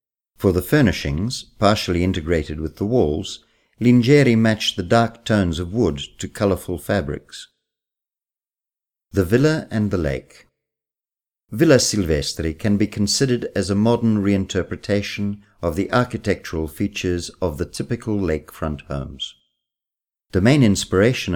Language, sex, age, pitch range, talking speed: Italian, male, 50-69, 80-105 Hz, 125 wpm